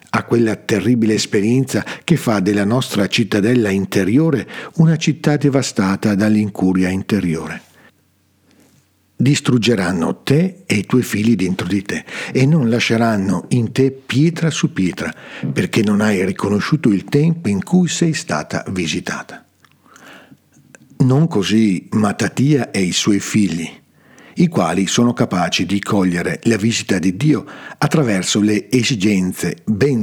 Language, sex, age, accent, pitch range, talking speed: Italian, male, 50-69, native, 100-135 Hz, 130 wpm